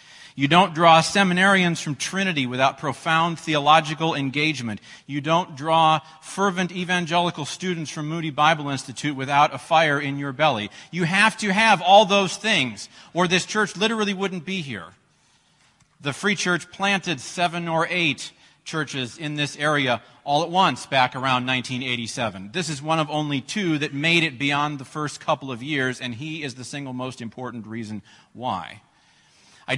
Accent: American